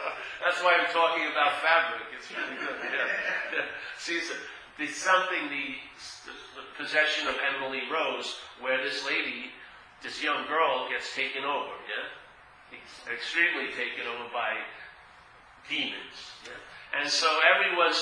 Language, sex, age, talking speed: English, male, 40-59, 135 wpm